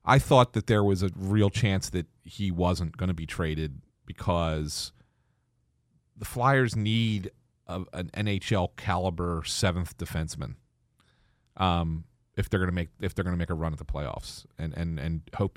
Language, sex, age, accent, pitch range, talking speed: English, male, 40-59, American, 90-115 Hz, 175 wpm